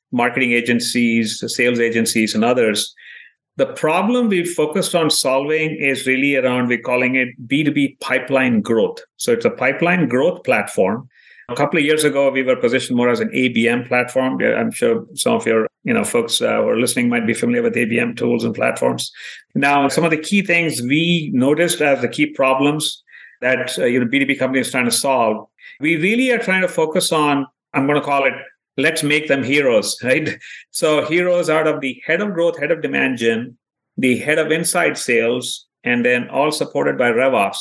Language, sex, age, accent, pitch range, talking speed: English, male, 50-69, Indian, 130-175 Hz, 200 wpm